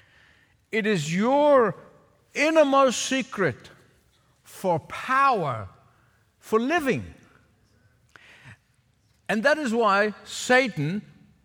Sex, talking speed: male, 75 wpm